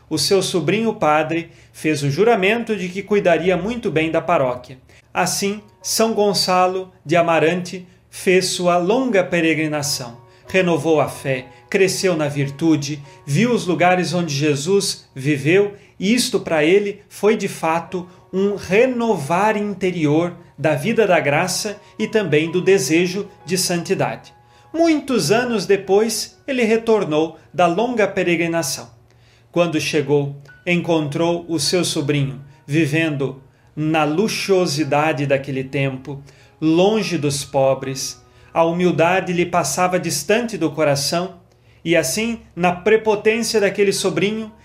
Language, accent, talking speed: Portuguese, Brazilian, 120 wpm